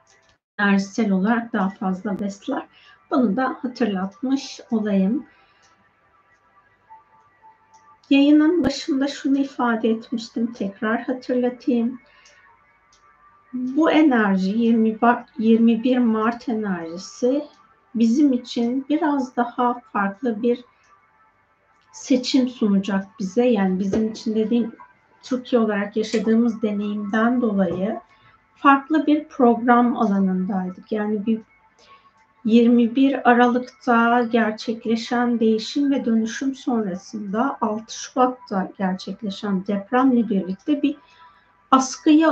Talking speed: 85 wpm